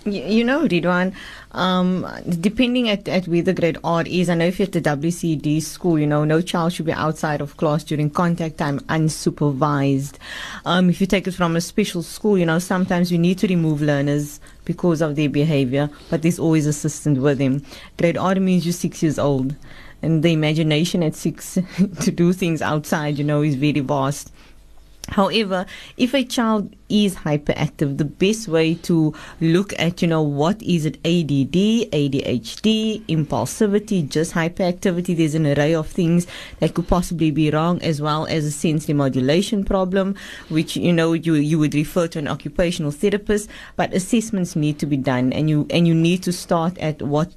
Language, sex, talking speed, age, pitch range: English, female, 185 wpm, 20-39, 150-180 Hz